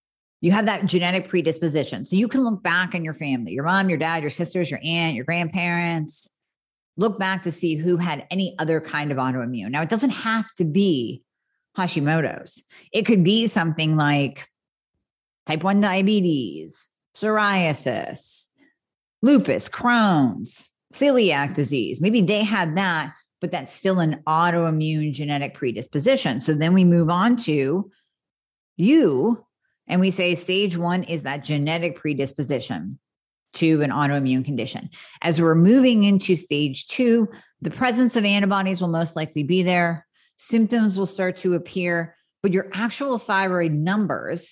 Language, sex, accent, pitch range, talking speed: English, female, American, 160-205 Hz, 150 wpm